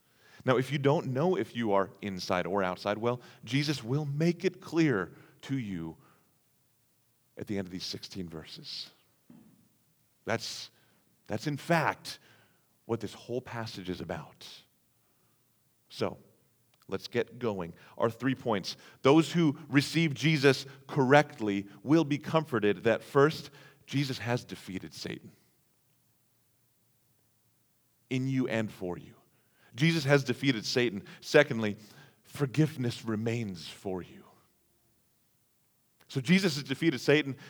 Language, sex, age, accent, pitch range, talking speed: English, male, 40-59, American, 100-145 Hz, 120 wpm